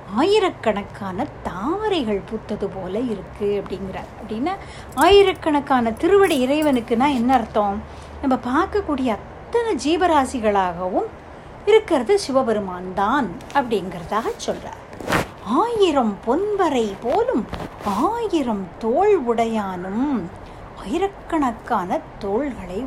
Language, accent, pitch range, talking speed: Tamil, native, 205-300 Hz, 80 wpm